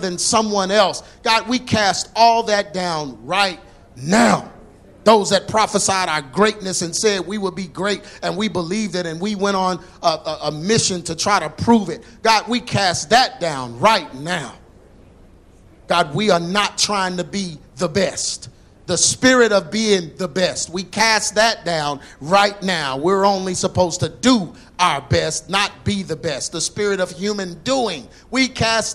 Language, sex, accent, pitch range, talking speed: English, male, American, 175-230 Hz, 175 wpm